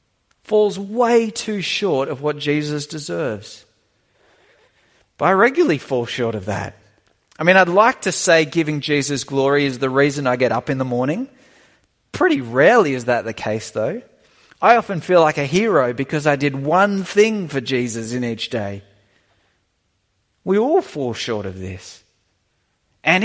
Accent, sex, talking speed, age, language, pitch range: Australian, male, 165 wpm, 30-49, English, 135-210 Hz